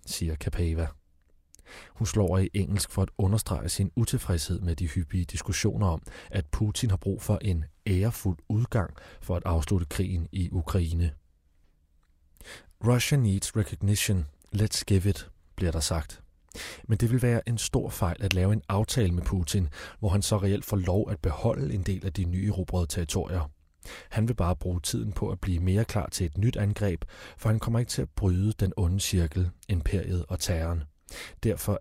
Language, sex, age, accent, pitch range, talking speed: Danish, male, 30-49, native, 85-105 Hz, 175 wpm